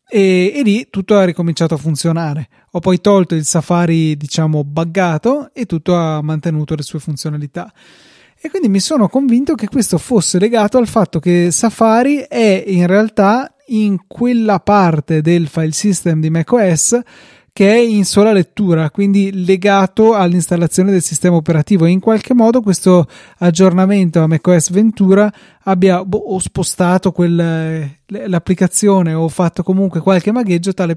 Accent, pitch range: native, 165-200 Hz